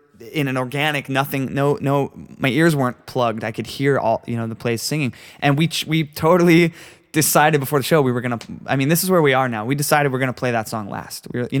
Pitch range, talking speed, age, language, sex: 115-140 Hz, 265 wpm, 20-39, English, male